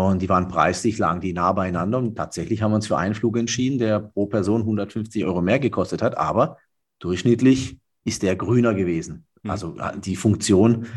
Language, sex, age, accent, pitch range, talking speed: German, male, 30-49, German, 95-115 Hz, 185 wpm